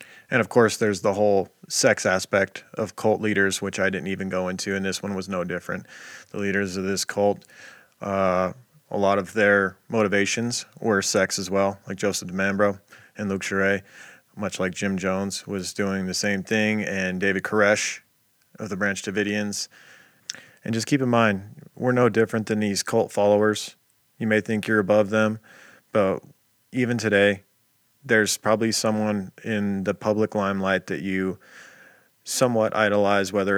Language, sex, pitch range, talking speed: English, male, 100-105 Hz, 165 wpm